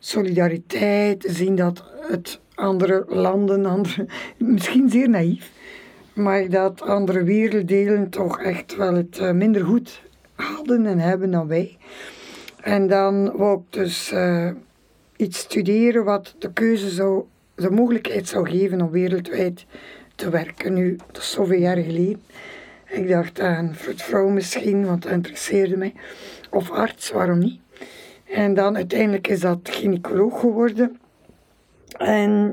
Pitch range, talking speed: 185-210 Hz, 135 wpm